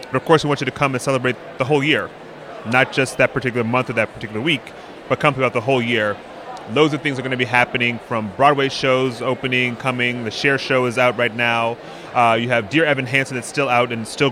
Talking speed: 245 wpm